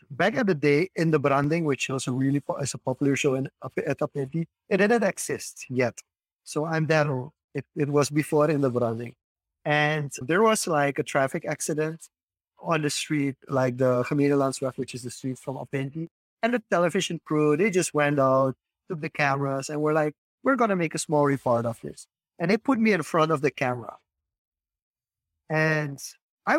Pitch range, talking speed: 130-165 Hz, 190 wpm